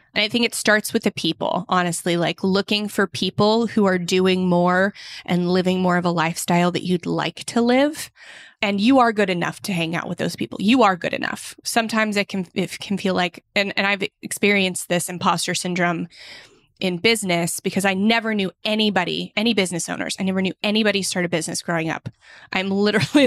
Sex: female